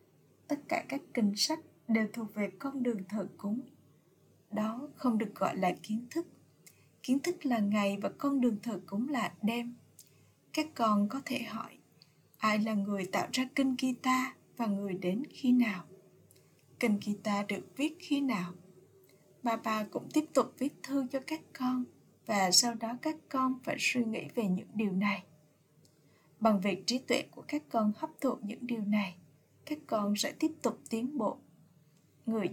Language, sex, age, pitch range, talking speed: Vietnamese, female, 20-39, 205-255 Hz, 175 wpm